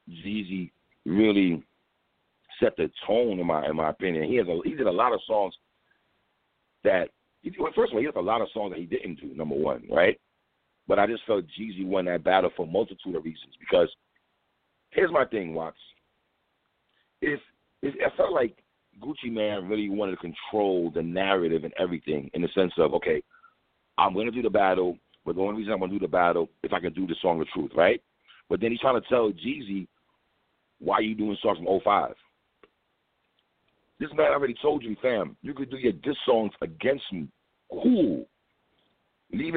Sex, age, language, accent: male, 50-69, English, American